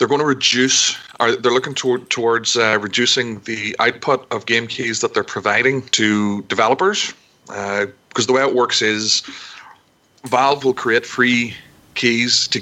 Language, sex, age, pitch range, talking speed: English, male, 40-59, 105-125 Hz, 155 wpm